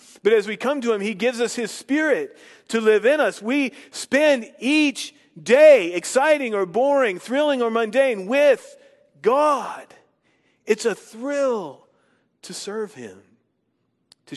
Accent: American